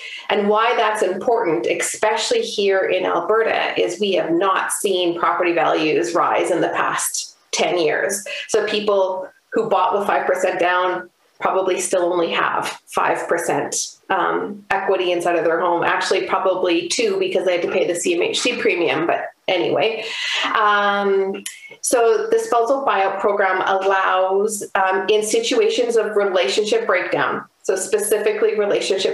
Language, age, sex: English, 30-49, female